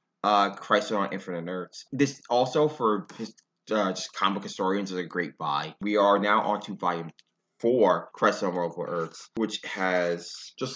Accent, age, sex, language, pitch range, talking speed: American, 20-39, male, English, 100-120 Hz, 165 wpm